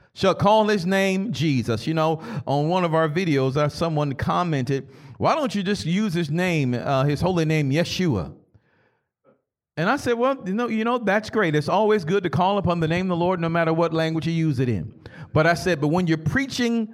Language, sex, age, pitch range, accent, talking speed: English, male, 50-69, 155-220 Hz, American, 220 wpm